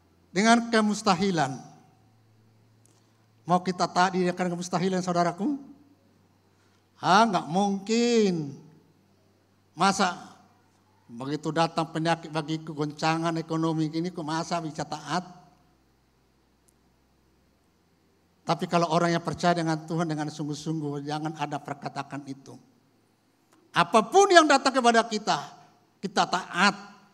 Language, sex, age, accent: Indonesian, male, 50-69, native